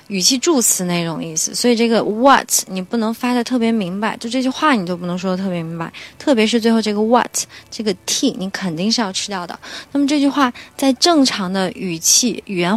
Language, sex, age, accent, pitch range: Chinese, female, 20-39, native, 195-250 Hz